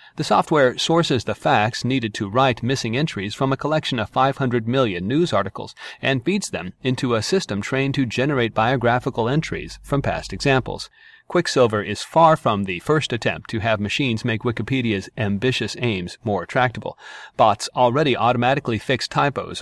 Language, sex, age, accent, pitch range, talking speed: English, male, 40-59, American, 115-145 Hz, 160 wpm